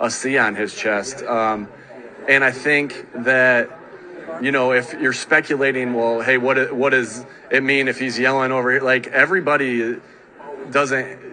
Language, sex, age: English, male, 30-49